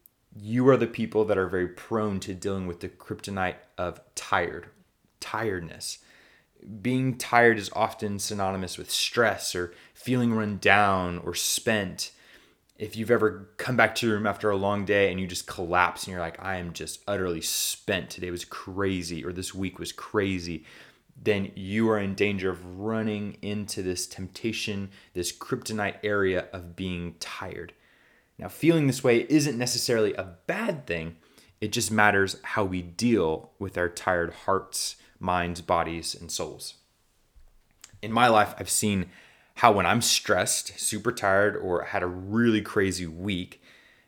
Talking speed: 160 wpm